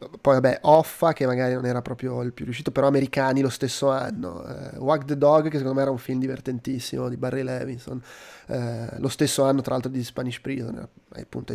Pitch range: 130-150 Hz